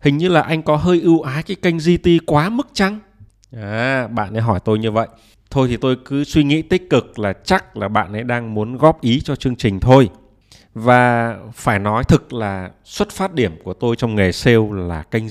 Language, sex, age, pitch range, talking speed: Vietnamese, male, 20-39, 110-140 Hz, 225 wpm